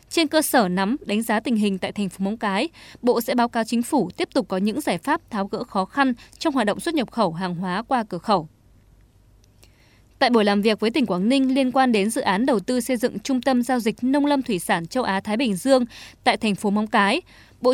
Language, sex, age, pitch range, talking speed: Vietnamese, female, 20-39, 205-270 Hz, 255 wpm